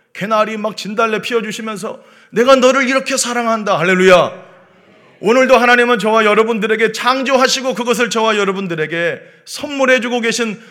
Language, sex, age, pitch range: Korean, male, 30-49, 185-235 Hz